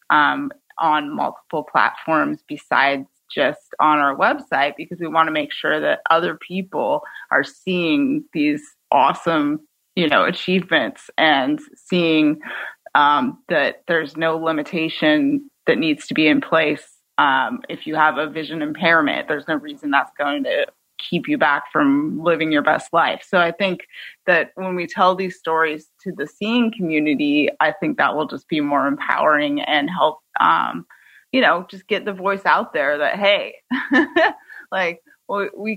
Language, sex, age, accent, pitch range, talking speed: English, female, 30-49, American, 160-235 Hz, 160 wpm